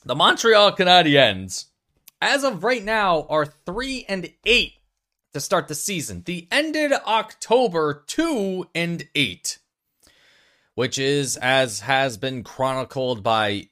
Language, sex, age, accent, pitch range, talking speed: English, male, 30-49, American, 110-180 Hz, 125 wpm